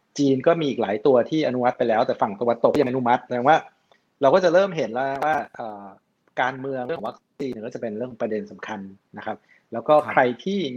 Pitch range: 115-140 Hz